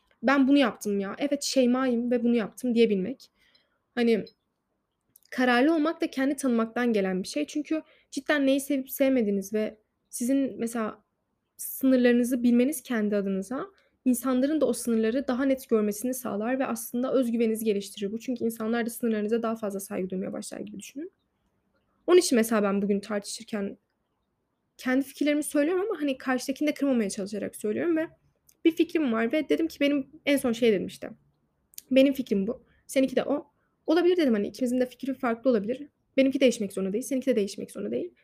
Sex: female